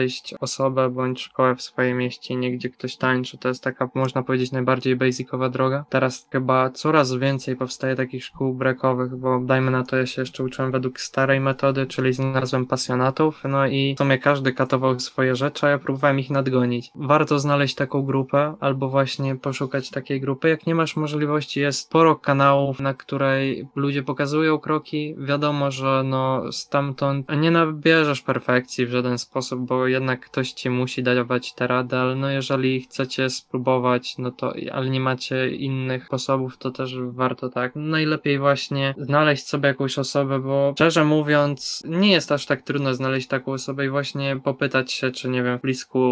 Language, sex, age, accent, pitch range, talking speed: Polish, male, 20-39, native, 130-140 Hz, 175 wpm